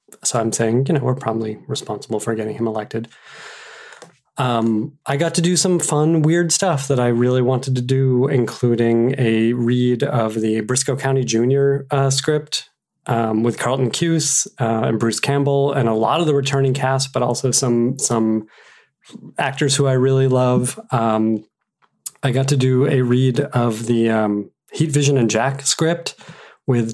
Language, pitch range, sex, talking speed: English, 115-145 Hz, male, 170 wpm